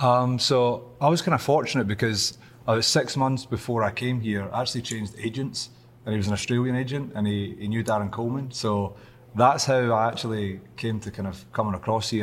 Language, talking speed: English, 205 wpm